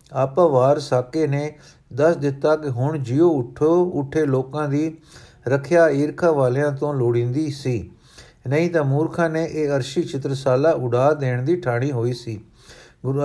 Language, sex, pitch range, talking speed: Punjabi, male, 130-160 Hz, 145 wpm